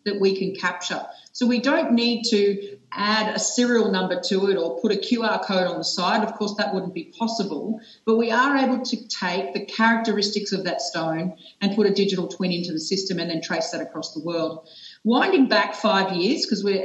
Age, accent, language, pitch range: 40-59, Australian, English, 190-235 Hz